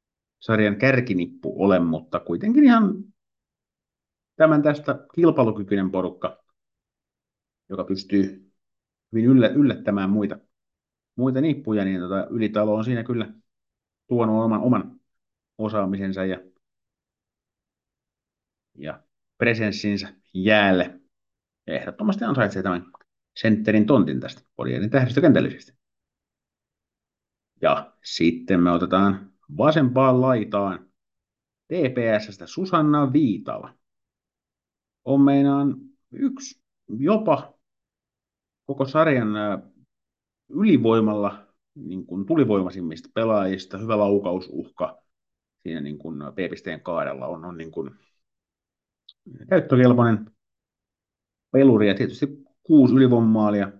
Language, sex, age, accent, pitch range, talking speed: Finnish, male, 50-69, native, 95-130 Hz, 80 wpm